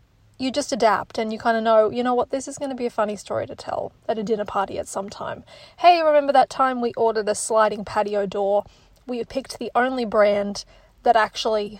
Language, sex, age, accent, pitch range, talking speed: English, female, 30-49, Australian, 215-260 Hz, 235 wpm